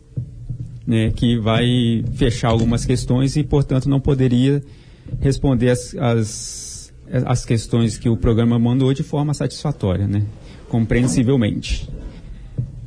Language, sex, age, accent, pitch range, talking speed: Portuguese, male, 40-59, Brazilian, 110-130 Hz, 110 wpm